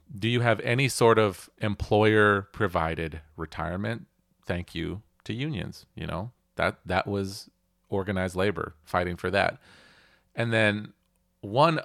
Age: 30-49